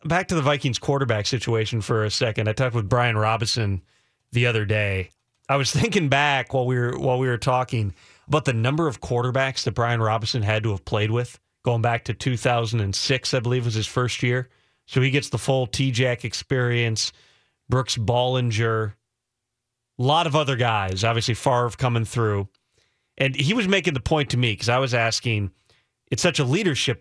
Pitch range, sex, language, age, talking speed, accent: 115-145 Hz, male, English, 30-49, 190 wpm, American